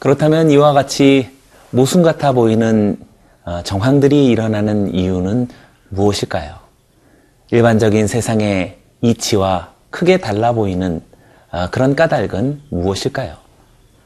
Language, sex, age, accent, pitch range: Korean, male, 30-49, native, 100-140 Hz